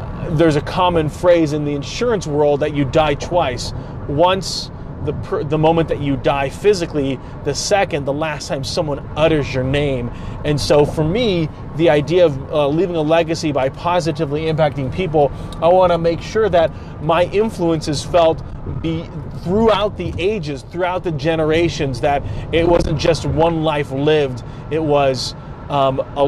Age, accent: 30-49, American